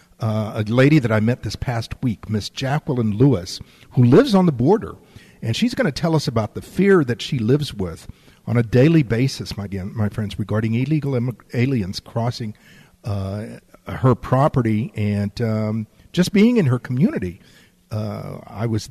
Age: 50-69